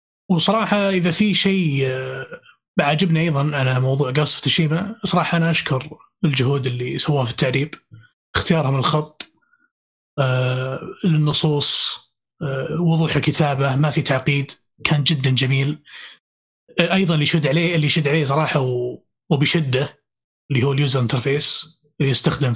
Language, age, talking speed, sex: Arabic, 30-49, 115 wpm, male